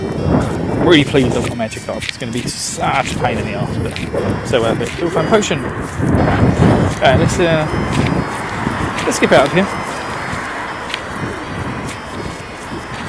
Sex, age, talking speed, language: male, 20-39, 145 wpm, English